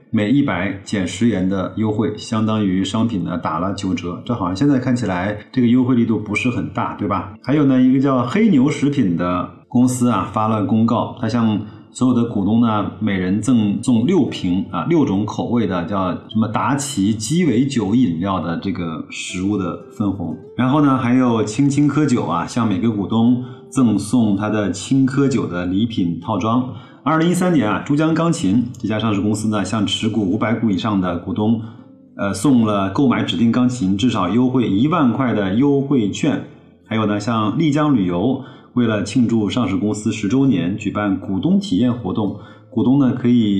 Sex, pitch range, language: male, 105-130 Hz, Chinese